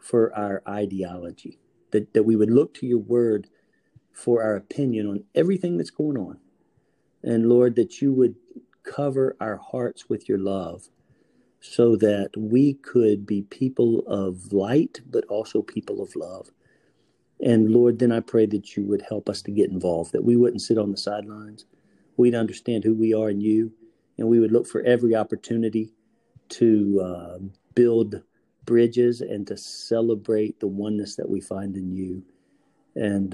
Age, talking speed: 50-69, 165 wpm